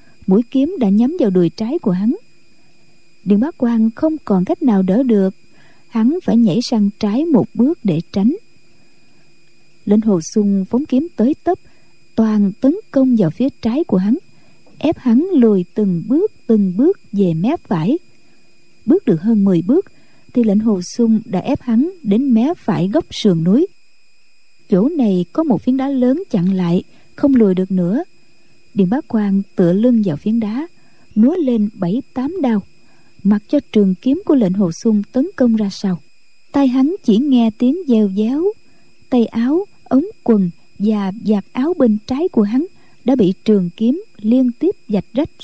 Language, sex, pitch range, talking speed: Vietnamese, female, 200-270 Hz, 175 wpm